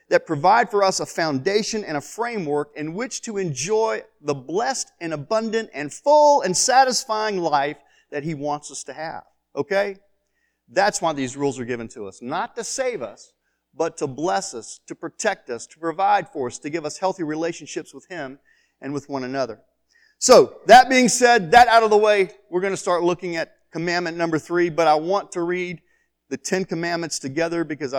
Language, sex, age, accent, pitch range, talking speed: English, male, 40-59, American, 160-220 Hz, 195 wpm